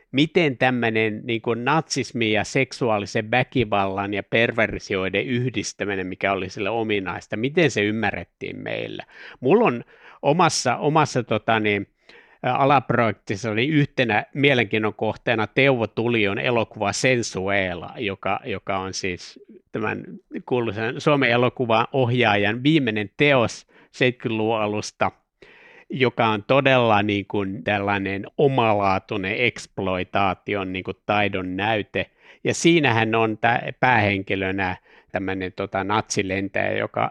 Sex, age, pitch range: male, 60-79, 100-125 Hz